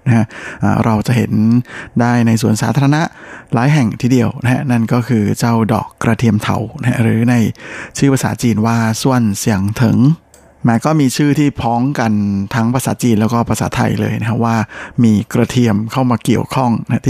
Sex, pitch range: male, 115-130 Hz